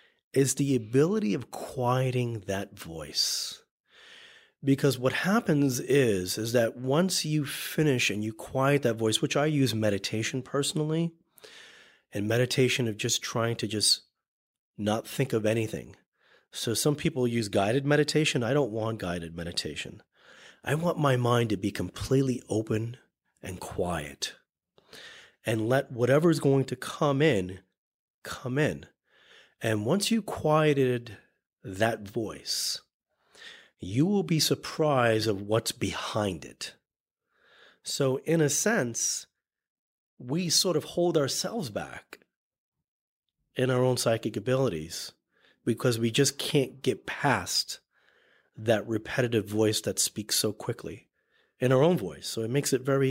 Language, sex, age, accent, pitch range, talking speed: English, male, 30-49, American, 110-145 Hz, 135 wpm